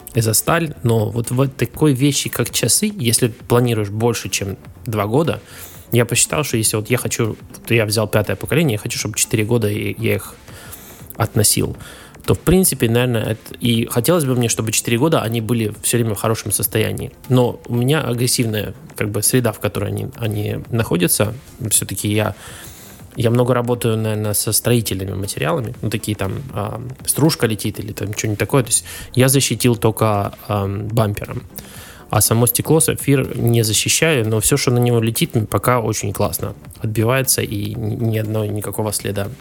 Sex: male